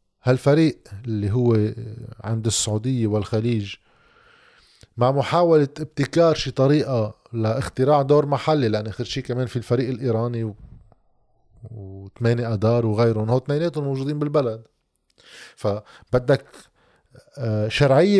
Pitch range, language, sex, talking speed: 110-140 Hz, Arabic, male, 100 wpm